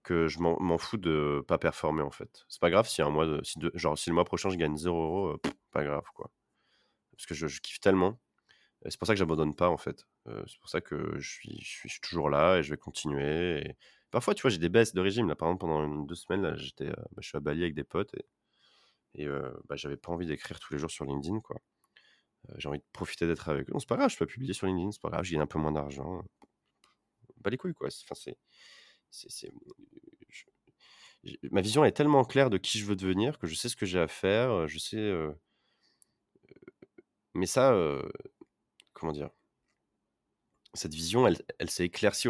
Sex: male